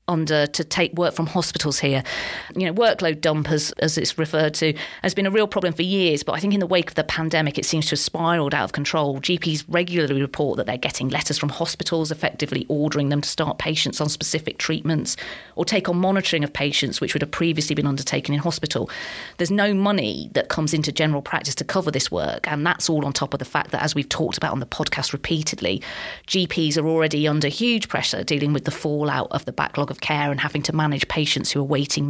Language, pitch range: English, 150-175 Hz